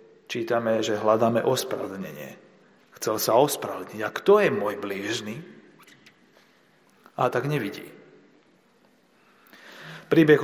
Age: 40-59